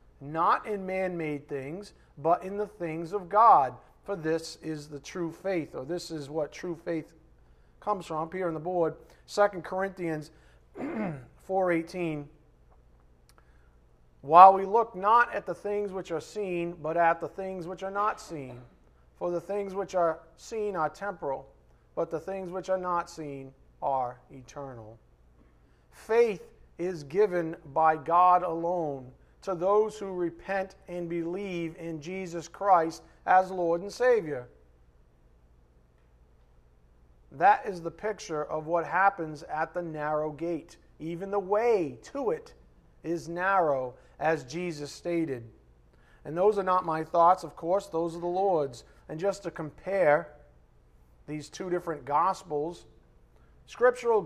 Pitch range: 135-185 Hz